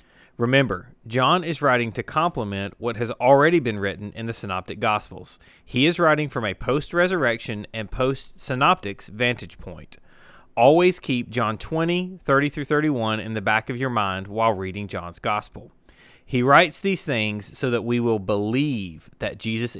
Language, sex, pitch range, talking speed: English, male, 105-145 Hz, 155 wpm